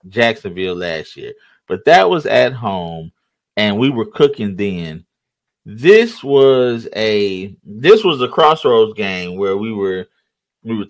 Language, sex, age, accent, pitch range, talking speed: English, male, 30-49, American, 105-155 Hz, 145 wpm